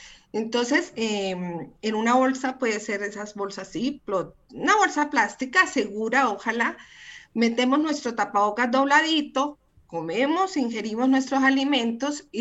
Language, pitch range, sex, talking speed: English, 200-280 Hz, female, 120 wpm